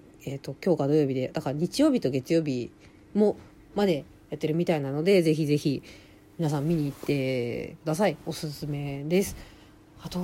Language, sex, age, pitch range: Japanese, female, 40-59, 140-190 Hz